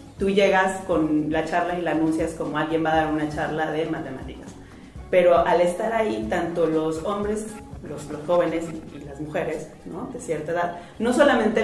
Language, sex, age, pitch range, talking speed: Spanish, female, 30-49, 160-195 Hz, 180 wpm